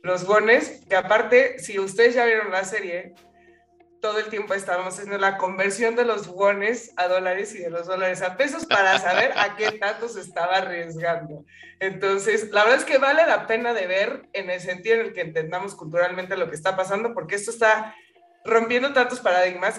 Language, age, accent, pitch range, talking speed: Spanish, 20-39, Mexican, 175-225 Hz, 195 wpm